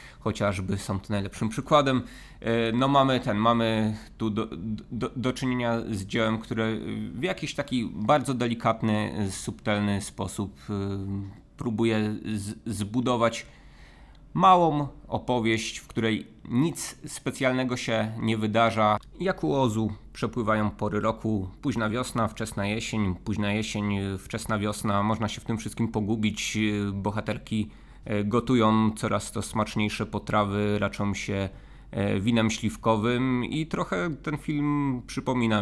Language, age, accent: Polish, 20-39, native